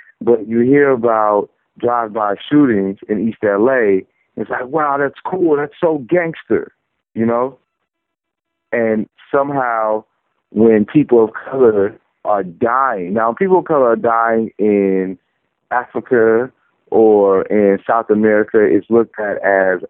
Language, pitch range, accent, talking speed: English, 110-140 Hz, American, 135 wpm